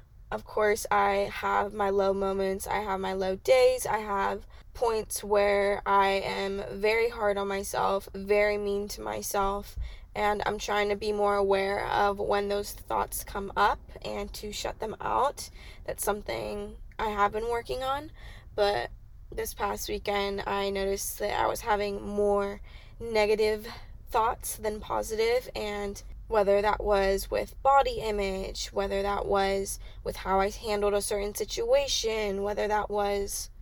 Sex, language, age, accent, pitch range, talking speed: female, English, 10-29, American, 200-215 Hz, 155 wpm